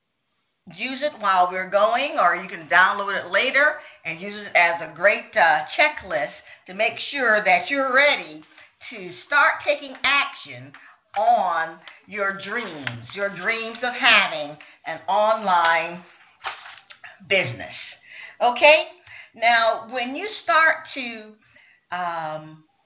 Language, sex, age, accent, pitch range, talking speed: English, female, 50-69, American, 185-290 Hz, 120 wpm